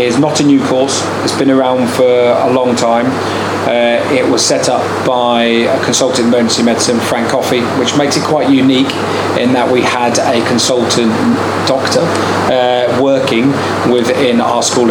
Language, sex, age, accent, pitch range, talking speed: English, male, 30-49, British, 115-130 Hz, 165 wpm